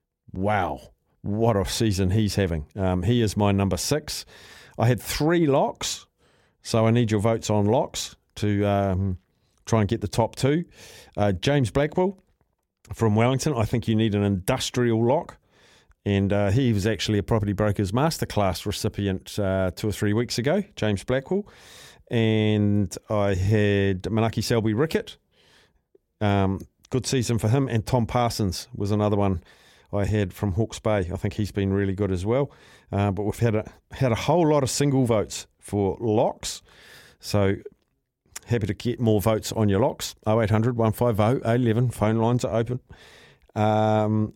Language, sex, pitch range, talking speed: English, male, 100-120 Hz, 165 wpm